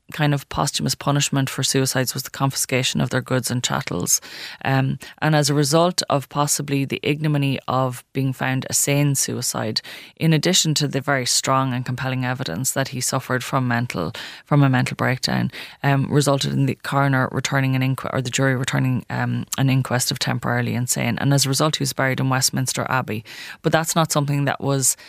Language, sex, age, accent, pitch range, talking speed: English, female, 20-39, Irish, 130-145 Hz, 195 wpm